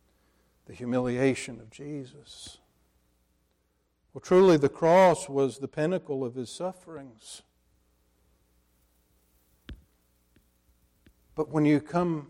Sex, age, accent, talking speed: male, 60-79, American, 90 wpm